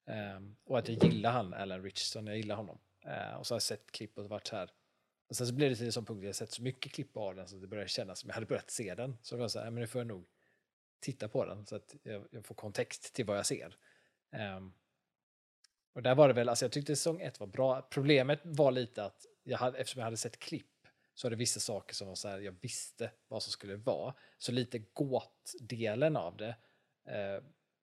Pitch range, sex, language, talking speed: 100-125 Hz, male, Swedish, 245 wpm